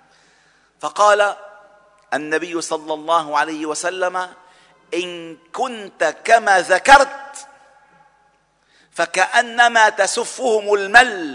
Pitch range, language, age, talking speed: 175-260 Hz, Arabic, 50-69, 70 wpm